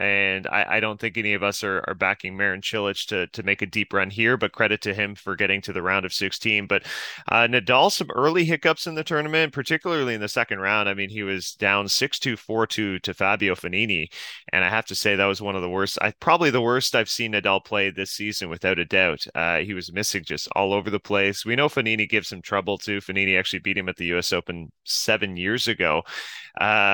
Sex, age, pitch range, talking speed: male, 30-49, 95-115 Hz, 240 wpm